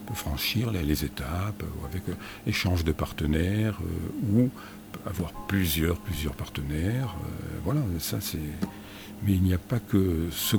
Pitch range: 90-110 Hz